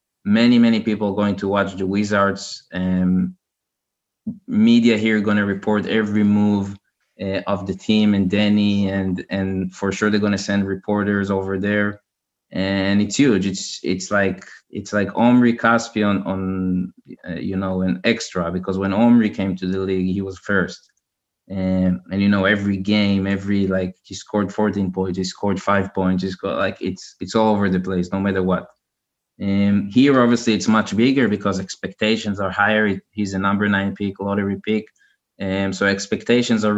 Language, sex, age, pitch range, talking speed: Hebrew, male, 20-39, 95-105 Hz, 180 wpm